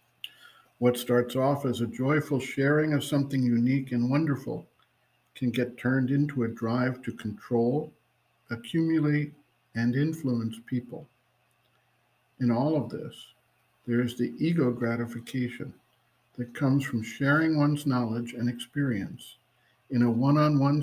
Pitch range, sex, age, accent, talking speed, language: 120-145 Hz, male, 50-69, American, 125 wpm, English